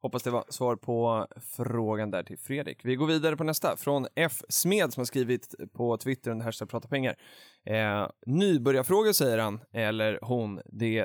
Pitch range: 110-145 Hz